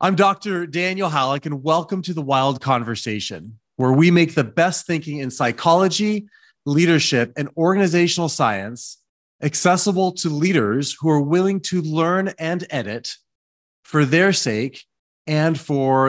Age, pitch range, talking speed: 30-49, 135-180 Hz, 140 wpm